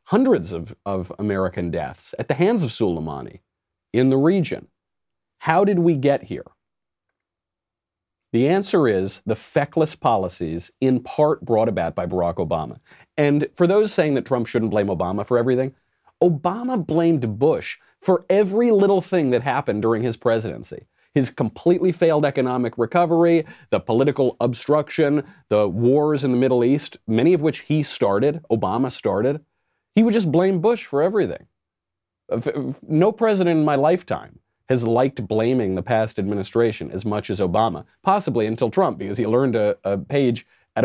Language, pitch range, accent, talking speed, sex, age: English, 100-160 Hz, American, 155 wpm, male, 30-49